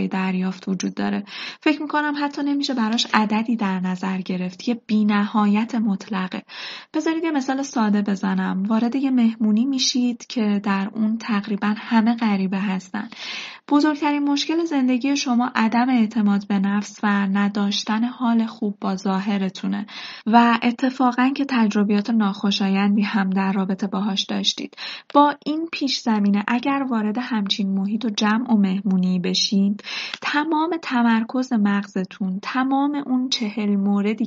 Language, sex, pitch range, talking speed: Persian, female, 200-255 Hz, 135 wpm